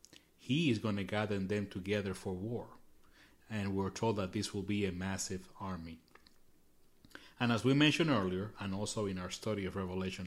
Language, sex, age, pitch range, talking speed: English, male, 30-49, 95-110 Hz, 180 wpm